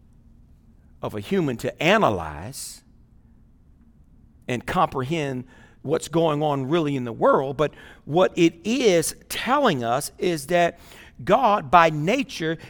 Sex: male